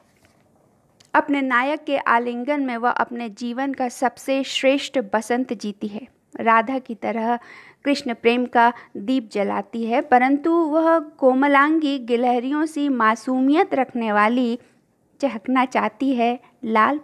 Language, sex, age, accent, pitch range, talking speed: Hindi, female, 50-69, native, 220-265 Hz, 125 wpm